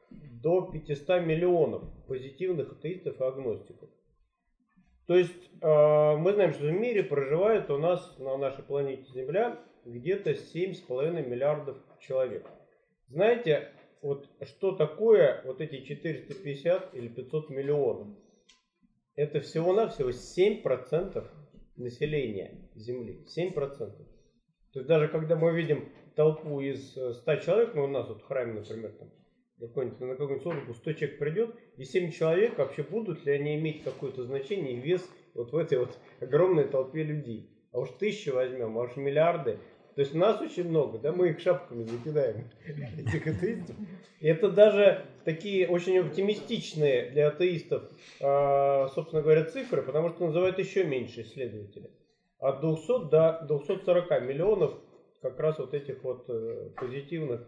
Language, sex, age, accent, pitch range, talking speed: Russian, male, 30-49, native, 140-195 Hz, 135 wpm